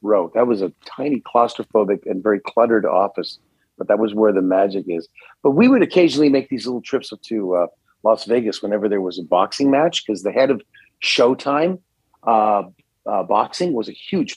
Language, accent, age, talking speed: English, American, 40-59, 195 wpm